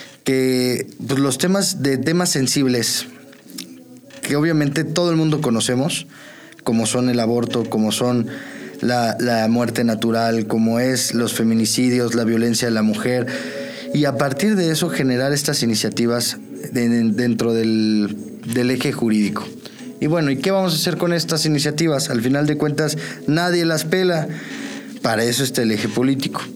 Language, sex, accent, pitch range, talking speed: Spanish, male, Mexican, 120-155 Hz, 150 wpm